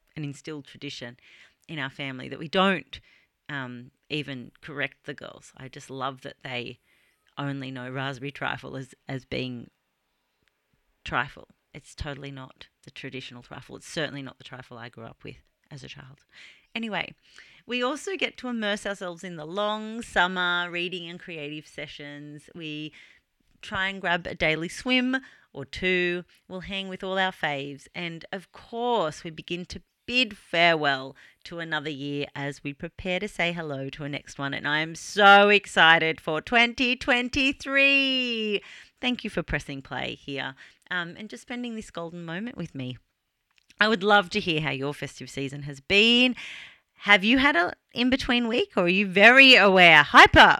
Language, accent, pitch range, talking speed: English, Australian, 140-210 Hz, 165 wpm